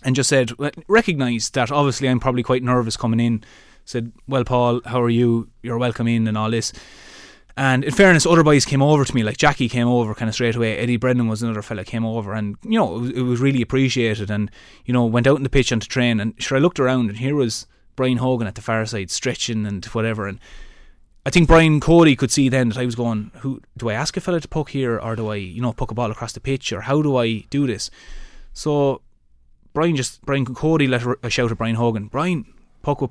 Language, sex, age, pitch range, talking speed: English, male, 20-39, 115-140 Hz, 250 wpm